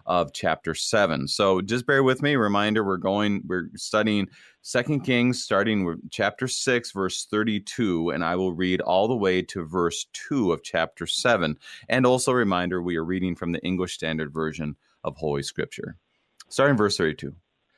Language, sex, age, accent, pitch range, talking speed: English, male, 30-49, American, 90-130 Hz, 170 wpm